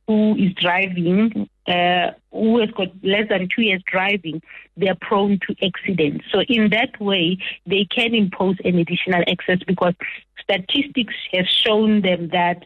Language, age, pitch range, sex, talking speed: English, 30-49, 185-220 Hz, female, 155 wpm